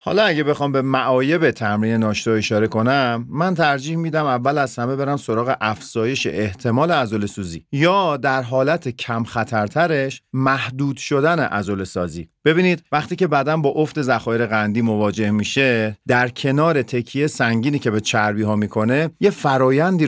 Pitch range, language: 110-145 Hz, Persian